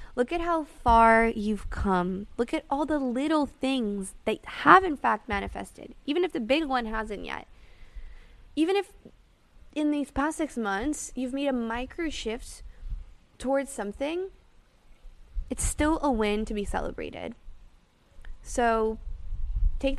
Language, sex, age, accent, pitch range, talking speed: English, female, 20-39, American, 195-255 Hz, 140 wpm